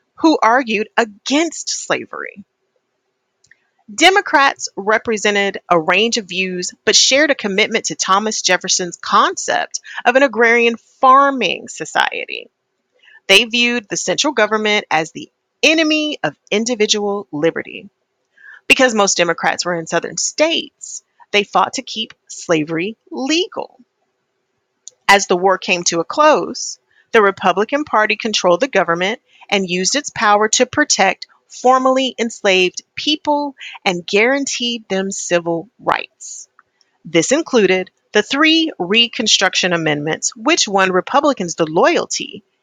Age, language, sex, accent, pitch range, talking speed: 30-49, English, female, American, 185-270 Hz, 120 wpm